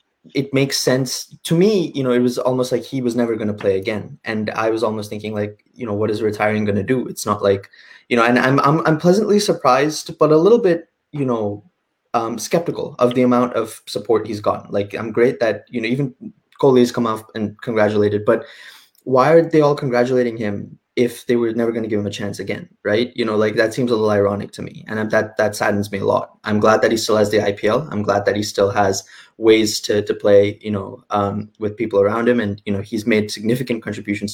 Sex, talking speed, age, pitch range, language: male, 240 wpm, 20-39, 105-125 Hz, English